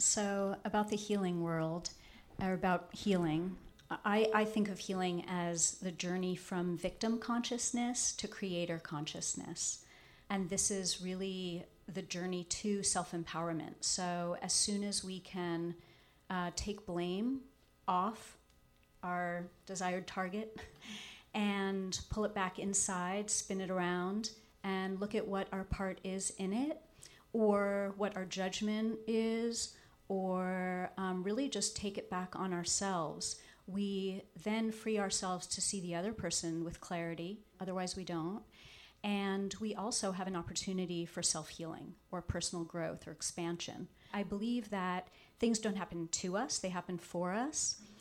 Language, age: English, 40-59